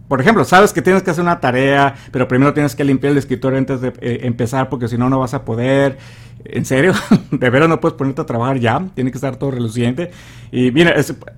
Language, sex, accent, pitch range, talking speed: Spanish, male, Mexican, 120-155 Hz, 230 wpm